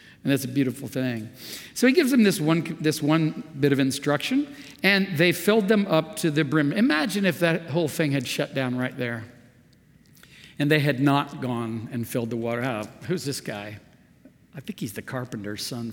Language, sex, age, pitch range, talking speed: English, male, 50-69, 120-165 Hz, 200 wpm